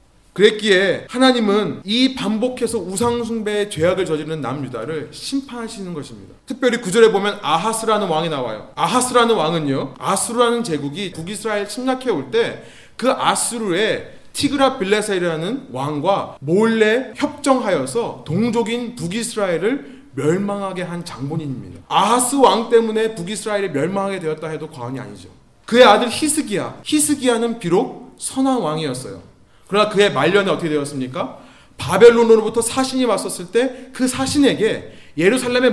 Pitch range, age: 150-235 Hz, 30-49